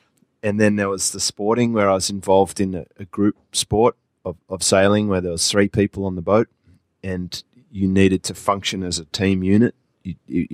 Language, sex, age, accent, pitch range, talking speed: English, male, 20-39, Australian, 95-105 Hz, 205 wpm